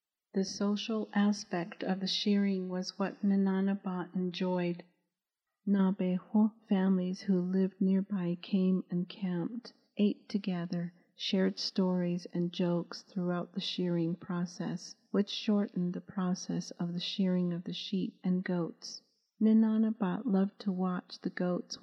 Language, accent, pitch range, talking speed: English, American, 180-210 Hz, 125 wpm